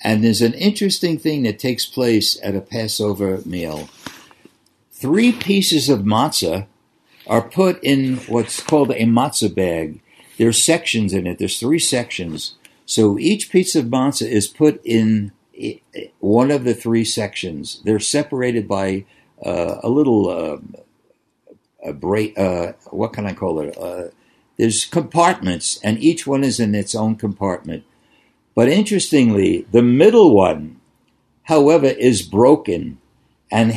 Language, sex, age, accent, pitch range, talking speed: English, male, 60-79, American, 105-150 Hz, 140 wpm